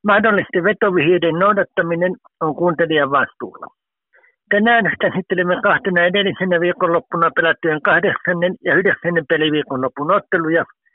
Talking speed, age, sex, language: 95 wpm, 60-79, male, Finnish